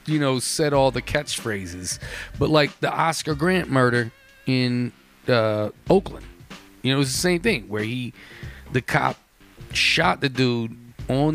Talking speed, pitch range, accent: 160 wpm, 105-135 Hz, American